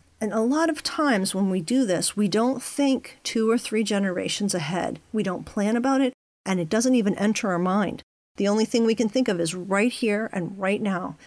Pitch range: 180-225 Hz